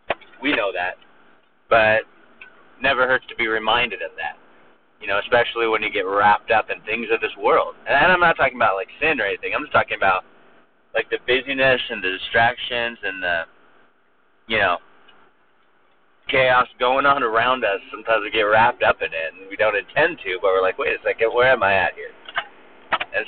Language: English